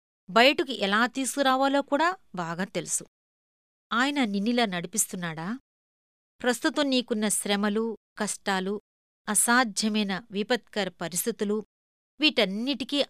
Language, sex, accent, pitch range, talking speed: Telugu, female, native, 185-245 Hz, 80 wpm